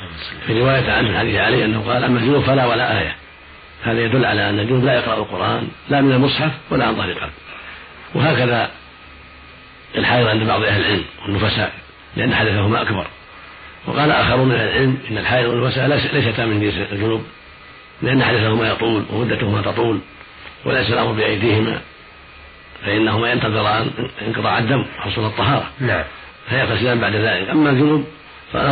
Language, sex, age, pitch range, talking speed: Arabic, male, 50-69, 105-125 Hz, 140 wpm